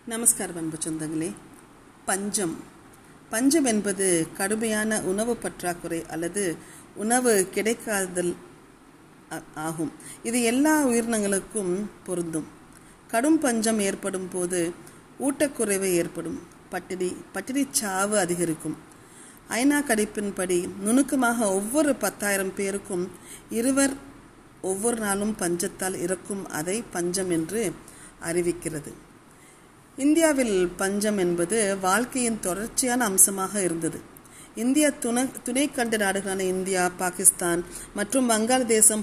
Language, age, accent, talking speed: Tamil, 40-59, native, 85 wpm